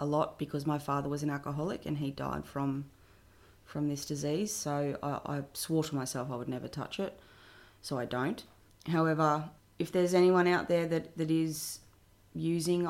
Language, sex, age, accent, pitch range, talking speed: English, female, 30-49, Australian, 140-160 Hz, 180 wpm